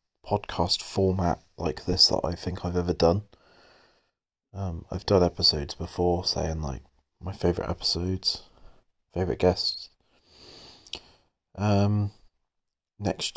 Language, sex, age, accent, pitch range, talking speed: English, male, 30-49, British, 85-95 Hz, 110 wpm